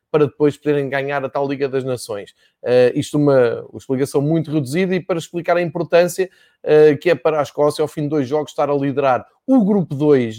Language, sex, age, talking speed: Portuguese, male, 20-39, 220 wpm